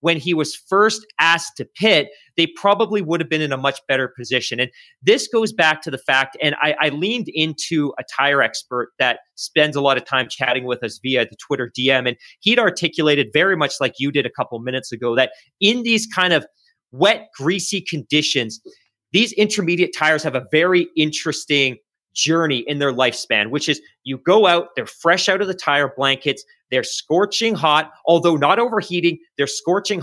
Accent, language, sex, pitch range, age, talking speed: American, English, male, 140-180 Hz, 30-49, 195 wpm